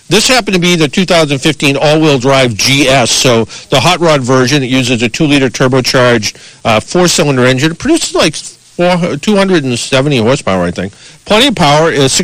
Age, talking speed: 50-69, 160 wpm